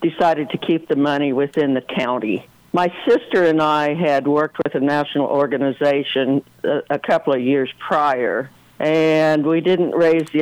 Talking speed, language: 160 wpm, English